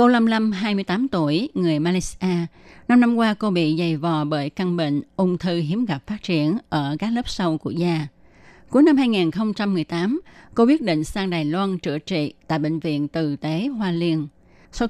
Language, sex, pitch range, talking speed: Vietnamese, female, 155-210 Hz, 195 wpm